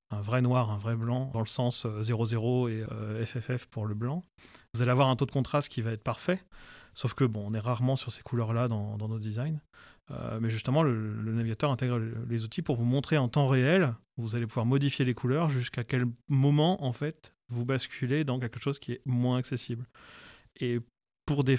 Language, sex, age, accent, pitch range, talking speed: French, male, 30-49, French, 115-130 Hz, 215 wpm